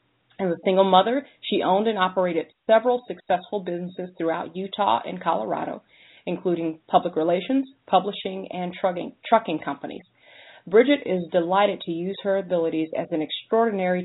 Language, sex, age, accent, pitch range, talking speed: English, female, 40-59, American, 170-205 Hz, 140 wpm